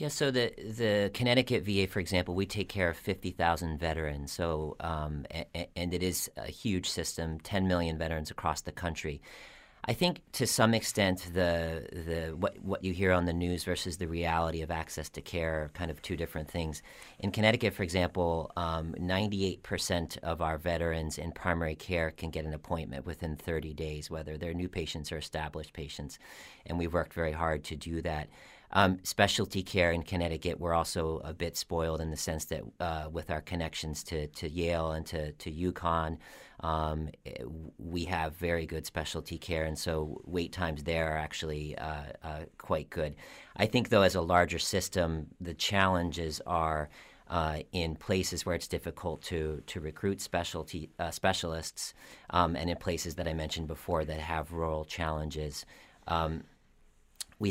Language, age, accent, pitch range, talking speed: English, 40-59, American, 80-90 Hz, 180 wpm